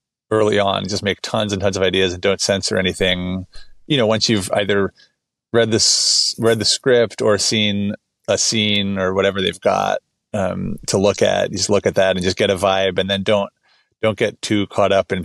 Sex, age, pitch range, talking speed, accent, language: male, 30-49, 95-110 Hz, 210 wpm, American, English